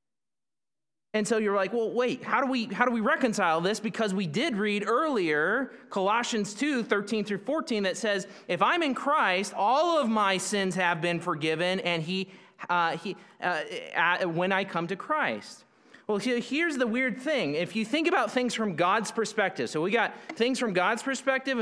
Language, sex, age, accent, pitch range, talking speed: English, male, 30-49, American, 170-235 Hz, 185 wpm